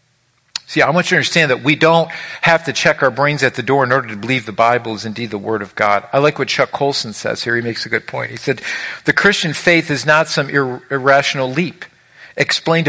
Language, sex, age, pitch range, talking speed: English, male, 50-69, 115-155 Hz, 240 wpm